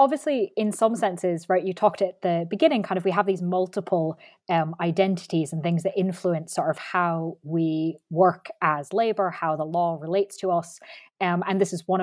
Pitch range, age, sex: 165-205 Hz, 20-39, female